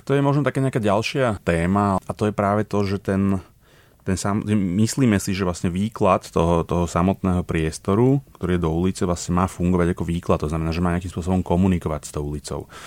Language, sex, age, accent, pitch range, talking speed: Czech, male, 30-49, native, 85-100 Hz, 205 wpm